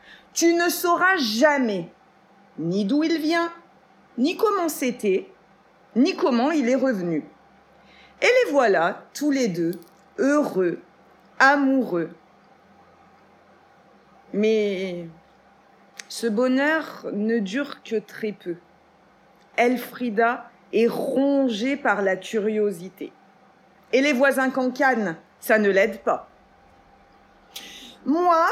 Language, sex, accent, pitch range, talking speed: French, female, French, 215-310 Hz, 100 wpm